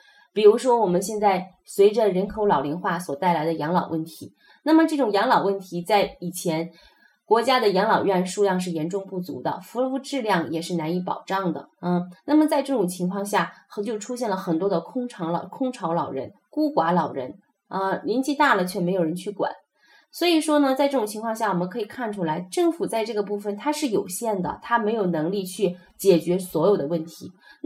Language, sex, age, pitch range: Chinese, female, 20-39, 170-230 Hz